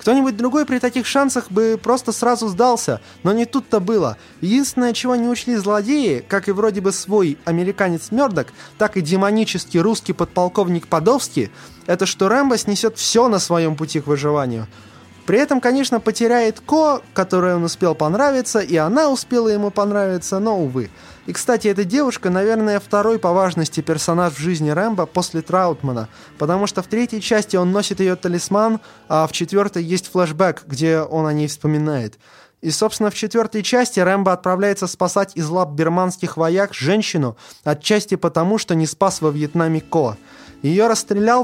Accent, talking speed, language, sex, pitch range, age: native, 165 wpm, Russian, male, 160-220 Hz, 20-39